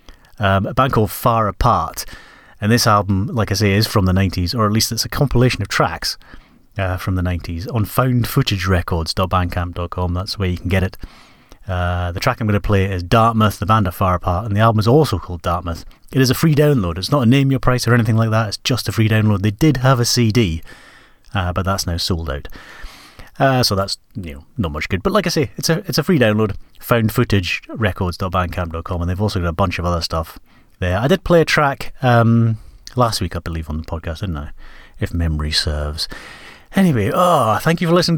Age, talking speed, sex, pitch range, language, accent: 30-49, 225 wpm, male, 90-125 Hz, English, British